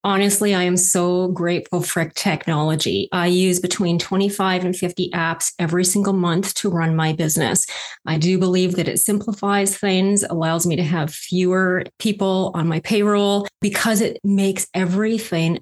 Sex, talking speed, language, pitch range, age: female, 160 wpm, English, 170-200 Hz, 30-49